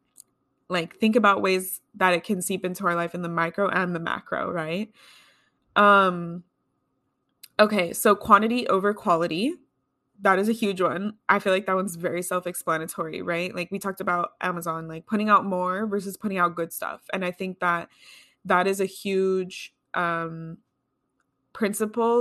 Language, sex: English, female